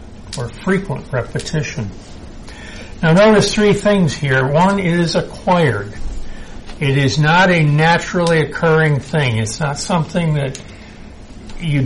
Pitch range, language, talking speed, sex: 120-160 Hz, English, 120 wpm, male